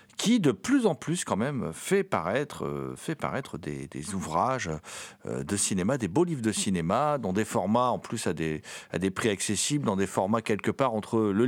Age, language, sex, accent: 50-69, French, male, French